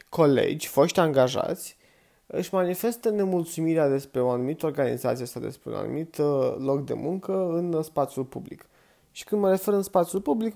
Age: 20-39